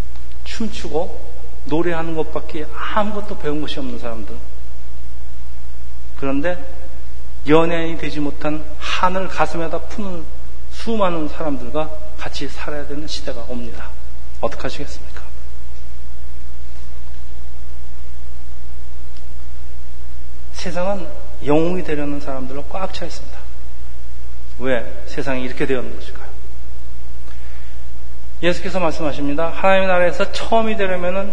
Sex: male